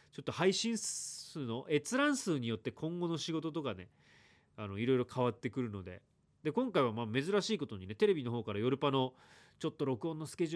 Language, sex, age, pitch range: Japanese, male, 30-49, 110-170 Hz